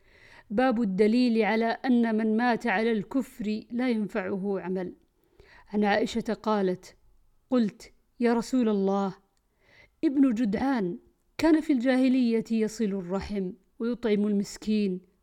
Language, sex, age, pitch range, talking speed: Arabic, female, 50-69, 200-240 Hz, 105 wpm